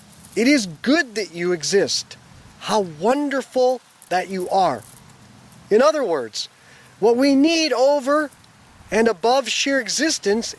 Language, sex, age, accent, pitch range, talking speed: English, male, 40-59, American, 185-260 Hz, 125 wpm